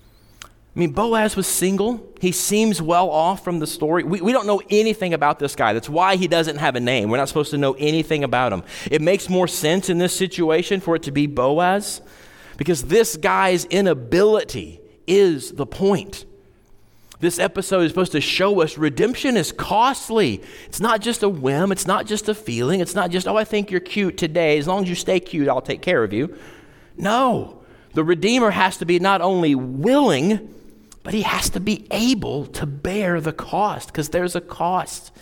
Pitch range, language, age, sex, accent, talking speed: 135-195 Hz, English, 40-59, male, American, 200 wpm